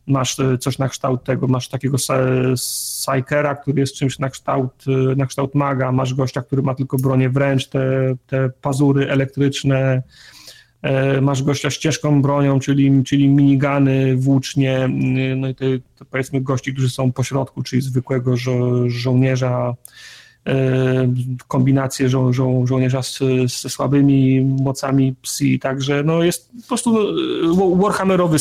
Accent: native